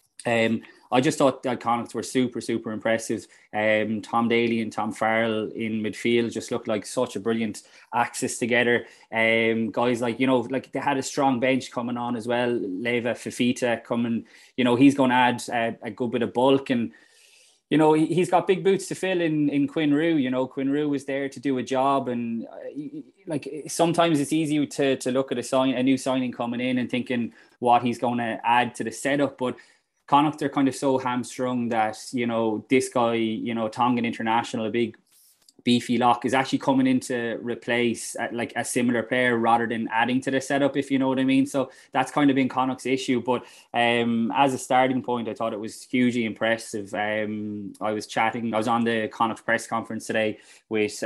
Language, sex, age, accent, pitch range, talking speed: English, male, 20-39, Irish, 115-130 Hz, 210 wpm